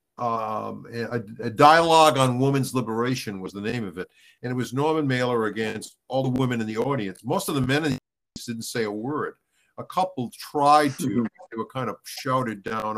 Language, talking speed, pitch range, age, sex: English, 205 wpm, 120-150 Hz, 50-69, male